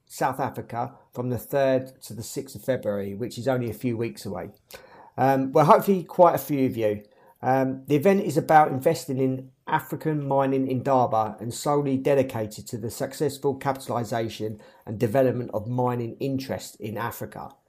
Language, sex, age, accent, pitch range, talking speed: English, male, 40-59, British, 120-145 Hz, 170 wpm